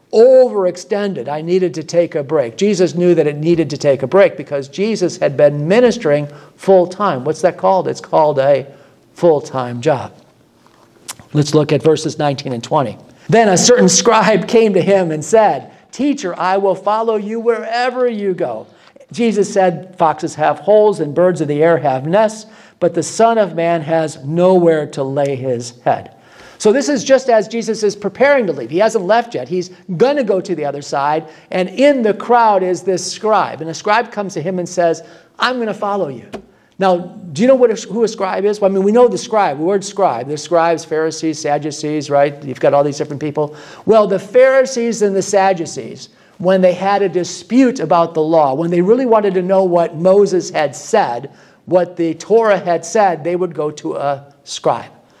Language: English